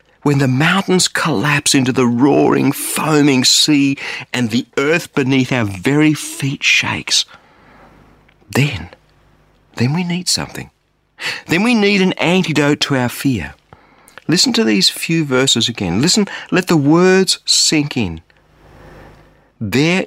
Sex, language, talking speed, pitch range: male, English, 130 wpm, 105-165 Hz